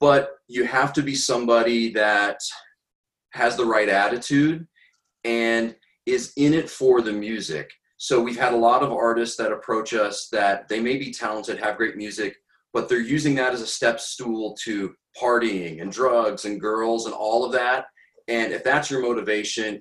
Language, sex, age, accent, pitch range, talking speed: English, male, 30-49, American, 100-125 Hz, 180 wpm